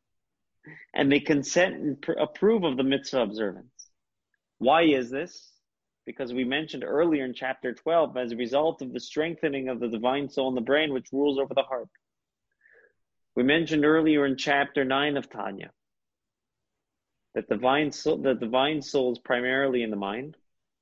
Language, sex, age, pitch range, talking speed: English, male, 30-49, 125-150 Hz, 155 wpm